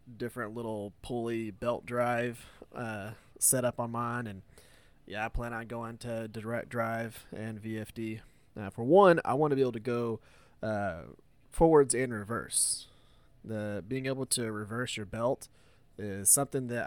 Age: 20-39